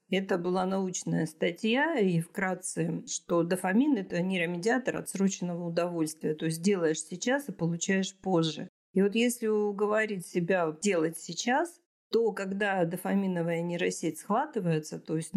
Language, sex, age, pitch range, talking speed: Russian, female, 40-59, 170-210 Hz, 135 wpm